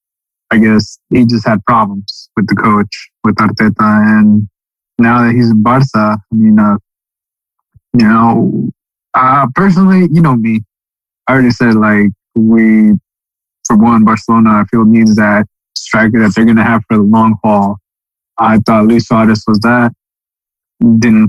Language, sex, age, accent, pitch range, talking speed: English, male, 20-39, American, 110-130 Hz, 160 wpm